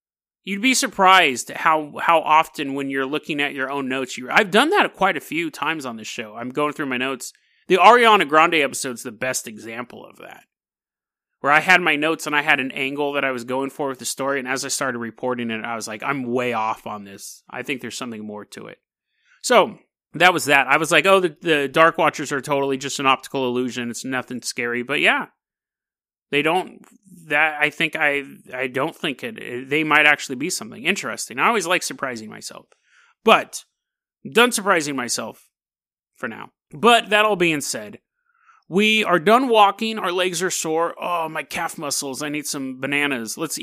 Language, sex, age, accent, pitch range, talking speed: English, male, 30-49, American, 135-195 Hz, 205 wpm